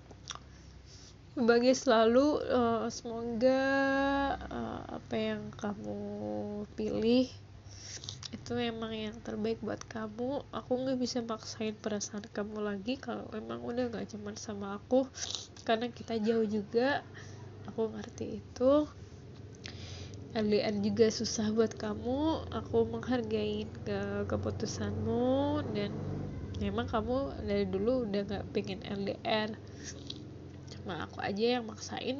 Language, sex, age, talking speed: Indonesian, female, 20-39, 115 wpm